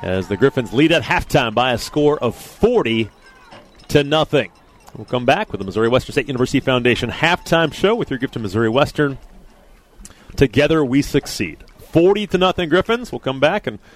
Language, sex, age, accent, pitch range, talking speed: English, male, 30-49, American, 120-155 Hz, 180 wpm